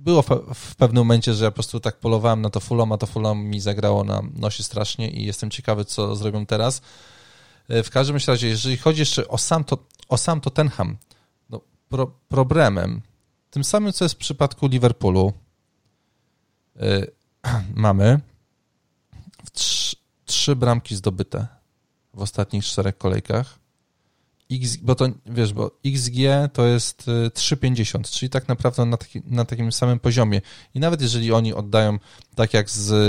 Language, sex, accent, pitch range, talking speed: Polish, male, native, 105-130 Hz, 150 wpm